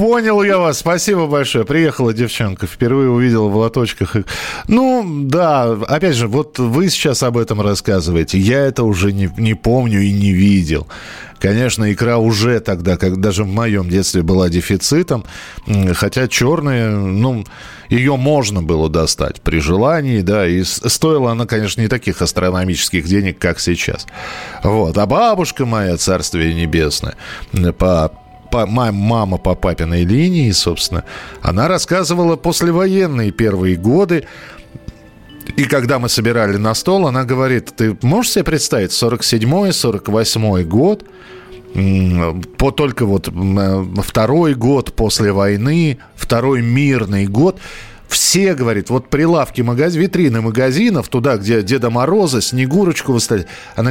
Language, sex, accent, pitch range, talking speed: Russian, male, native, 100-140 Hz, 130 wpm